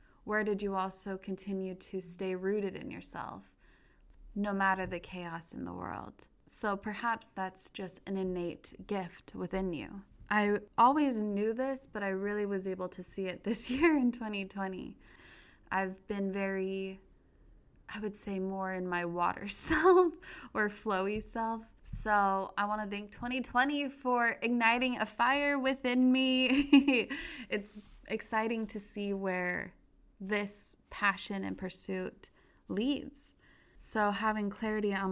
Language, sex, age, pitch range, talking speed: English, female, 20-39, 185-220 Hz, 140 wpm